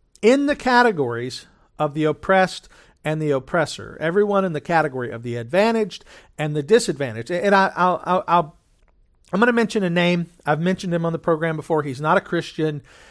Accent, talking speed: American, 185 wpm